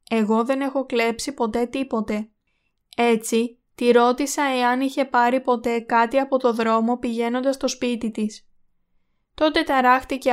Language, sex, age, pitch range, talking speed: Greek, female, 20-39, 225-265 Hz, 135 wpm